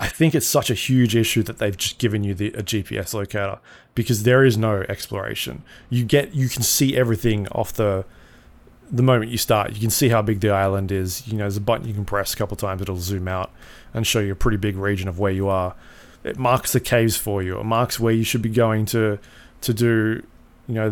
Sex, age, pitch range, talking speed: male, 20-39, 100-120 Hz, 245 wpm